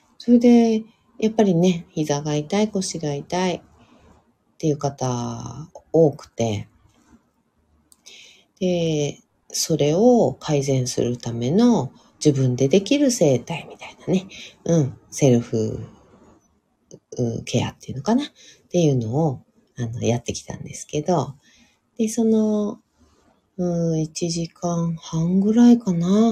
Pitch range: 120-165 Hz